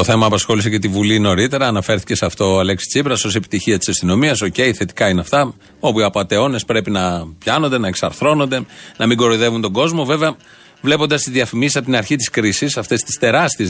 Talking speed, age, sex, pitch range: 205 wpm, 40-59, male, 110-140 Hz